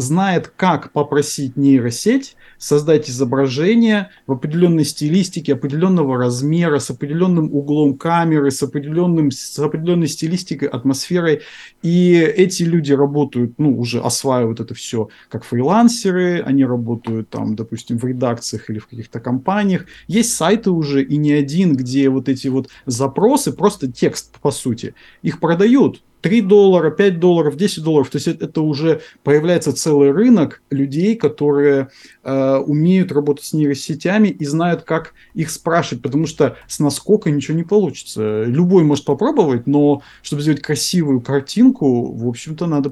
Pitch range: 135-170 Hz